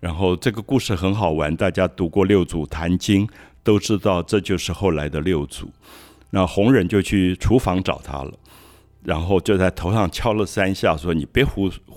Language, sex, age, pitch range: Chinese, male, 60-79, 80-105 Hz